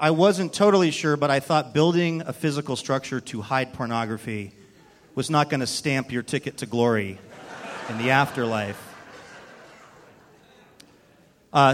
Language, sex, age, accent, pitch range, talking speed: English, male, 30-49, American, 115-145 Hz, 140 wpm